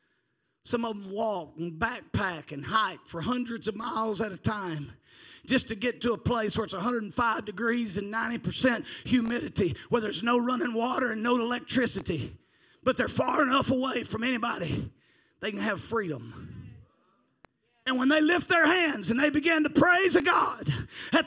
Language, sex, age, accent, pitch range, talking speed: English, male, 40-59, American, 250-365 Hz, 170 wpm